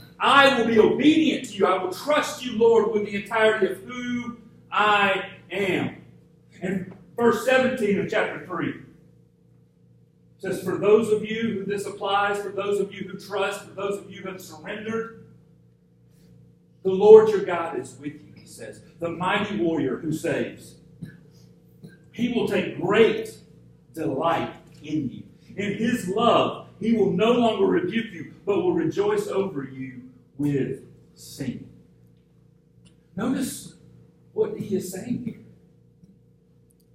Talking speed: 145 wpm